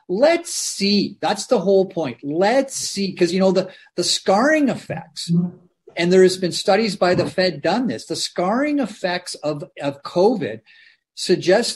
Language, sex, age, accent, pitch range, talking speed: English, male, 40-59, American, 145-195 Hz, 165 wpm